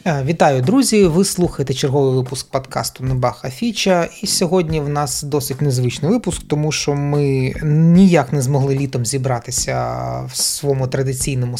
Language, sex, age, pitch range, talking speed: Ukrainian, male, 30-49, 130-175 Hz, 140 wpm